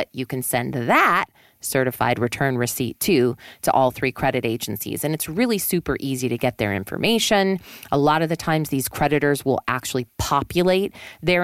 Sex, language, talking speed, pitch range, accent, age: female, English, 170 wpm, 135-215 Hz, American, 30-49